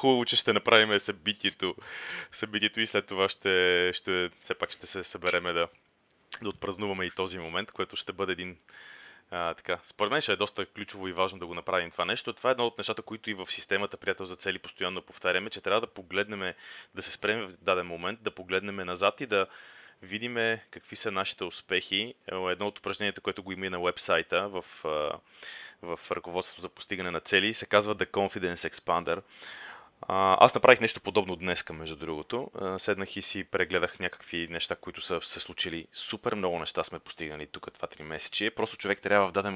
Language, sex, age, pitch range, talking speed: Bulgarian, male, 20-39, 90-105 Hz, 190 wpm